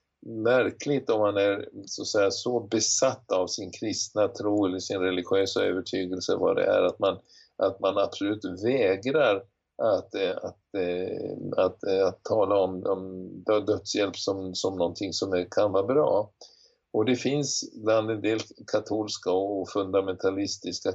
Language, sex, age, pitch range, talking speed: Swedish, male, 50-69, 95-120 Hz, 150 wpm